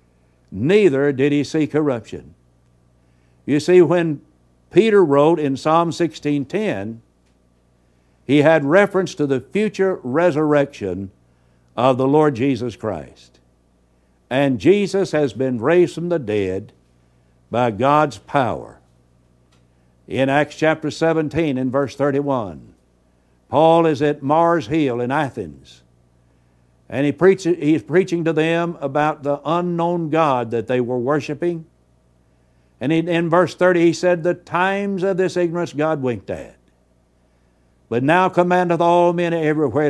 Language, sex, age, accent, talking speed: English, male, 60-79, American, 130 wpm